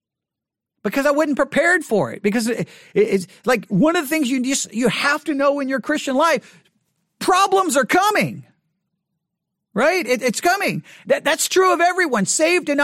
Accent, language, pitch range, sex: American, English, 205-285 Hz, male